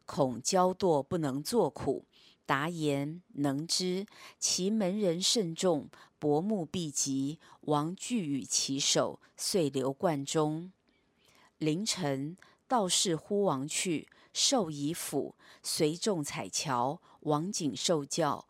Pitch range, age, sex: 145-195 Hz, 40-59, female